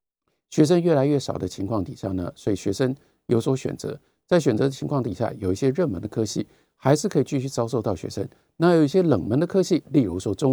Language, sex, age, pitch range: Chinese, male, 50-69, 110-155 Hz